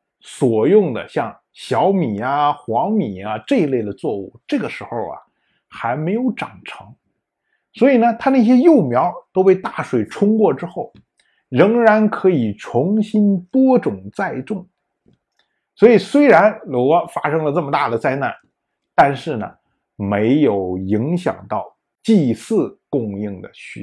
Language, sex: Chinese, male